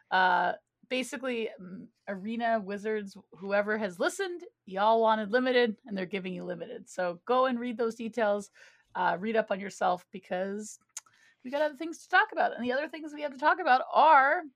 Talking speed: 185 wpm